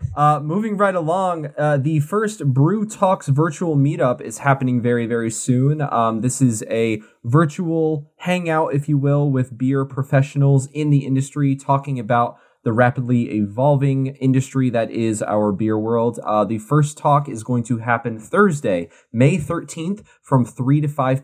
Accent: American